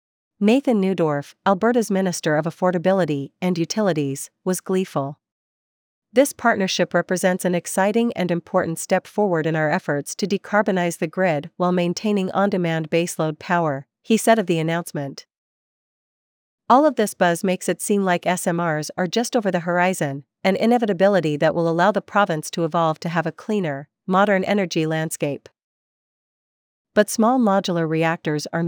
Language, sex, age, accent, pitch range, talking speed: English, female, 40-59, American, 160-200 Hz, 150 wpm